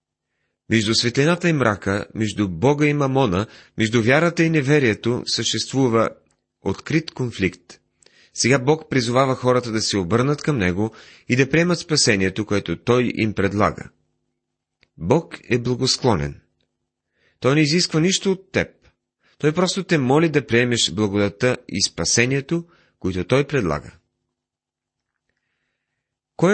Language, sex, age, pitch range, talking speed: Bulgarian, male, 30-49, 100-135 Hz, 120 wpm